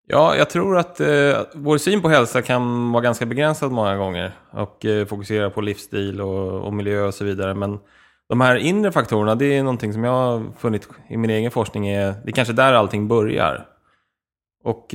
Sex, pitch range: male, 100-125 Hz